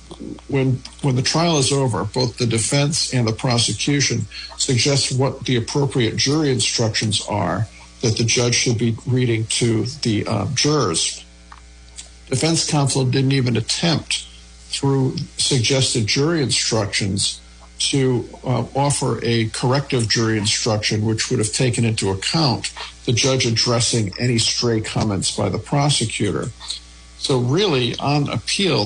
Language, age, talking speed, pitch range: English, 50-69, 135 wpm, 105-130 Hz